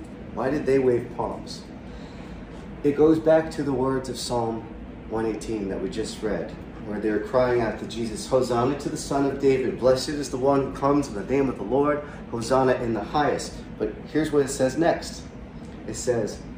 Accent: American